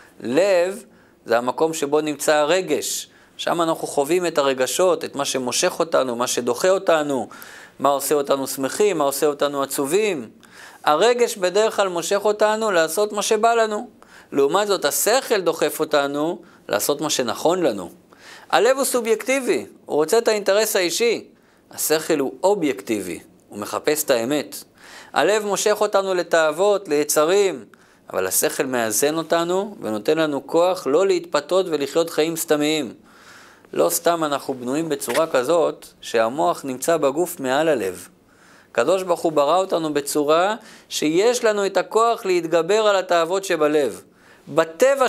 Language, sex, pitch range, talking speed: Hebrew, male, 150-205 Hz, 135 wpm